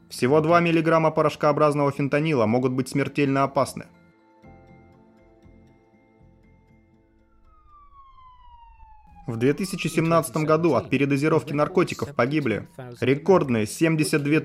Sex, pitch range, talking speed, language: male, 120-150 Hz, 75 wpm, Russian